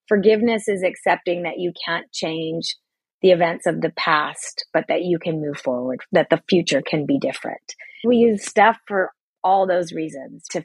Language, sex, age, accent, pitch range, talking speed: English, female, 30-49, American, 180-230 Hz, 180 wpm